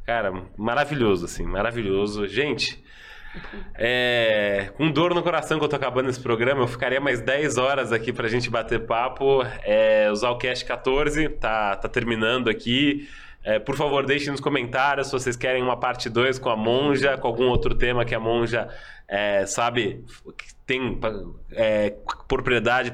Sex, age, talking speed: male, 20-39, 165 wpm